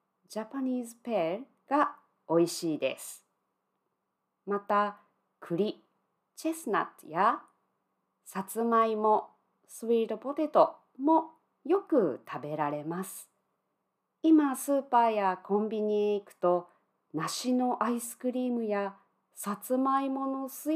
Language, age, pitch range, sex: Japanese, 40-59, 205-280 Hz, female